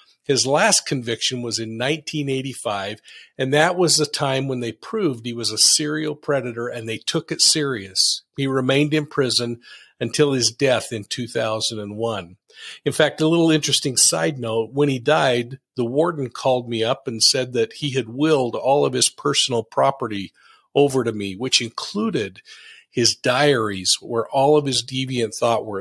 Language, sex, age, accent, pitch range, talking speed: English, male, 50-69, American, 115-150 Hz, 170 wpm